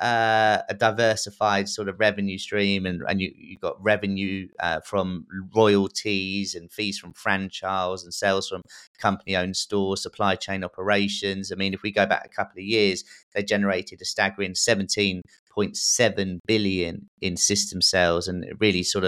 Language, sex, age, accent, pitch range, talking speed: English, male, 30-49, British, 95-110 Hz, 160 wpm